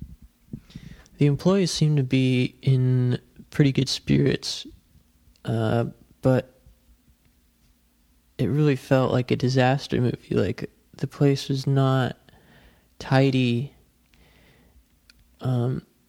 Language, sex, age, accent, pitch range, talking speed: English, male, 20-39, American, 120-135 Hz, 95 wpm